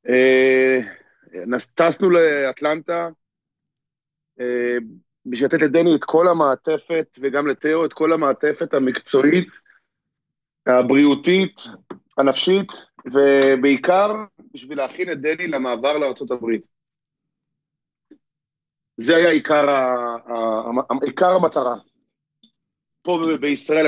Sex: male